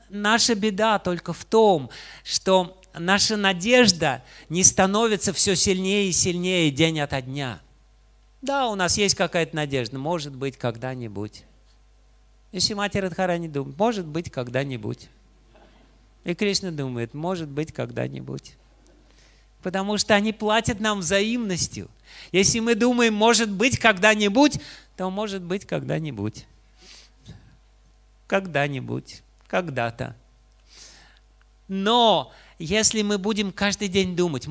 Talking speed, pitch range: 120 wpm, 145-195 Hz